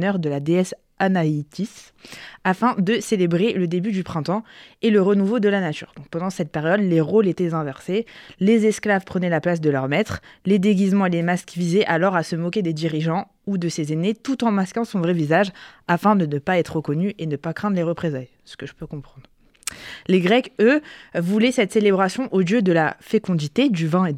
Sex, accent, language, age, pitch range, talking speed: female, French, French, 20-39, 165-205 Hz, 220 wpm